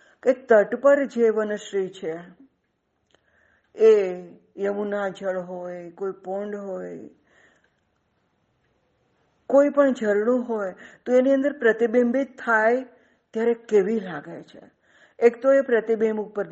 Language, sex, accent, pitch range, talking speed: Gujarati, female, native, 185-235 Hz, 65 wpm